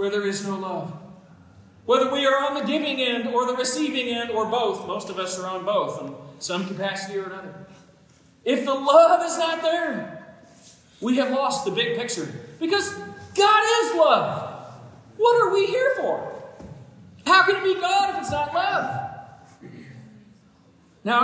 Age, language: 40-59, English